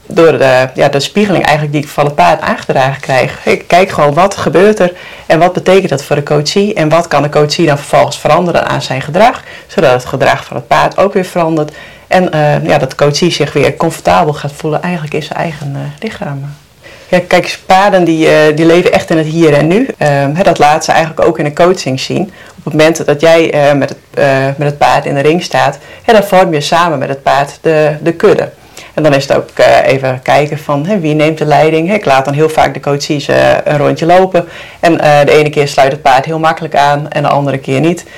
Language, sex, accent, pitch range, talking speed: Dutch, female, Dutch, 145-175 Hz, 235 wpm